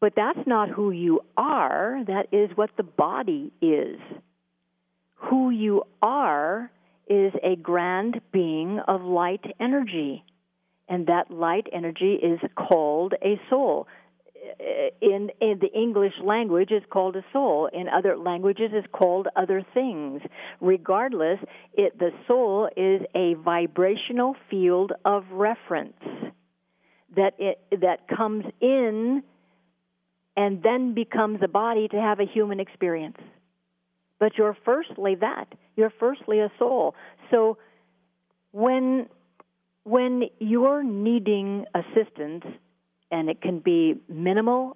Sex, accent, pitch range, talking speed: female, American, 175-230 Hz, 120 wpm